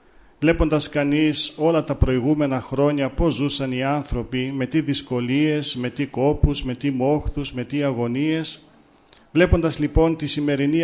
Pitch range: 135-160 Hz